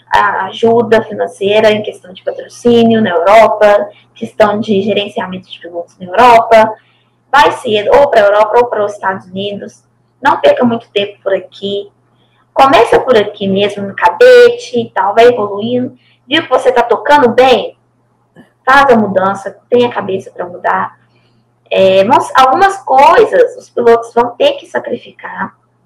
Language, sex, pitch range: Portuguese, female, 205-245 Hz